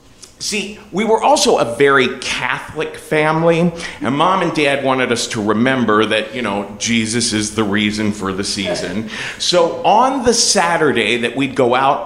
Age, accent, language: 40-59, American, English